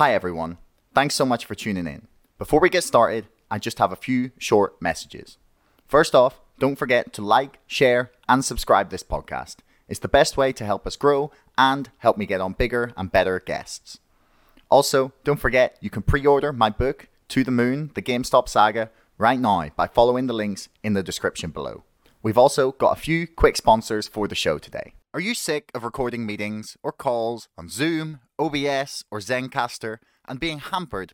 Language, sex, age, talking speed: English, male, 30-49, 190 wpm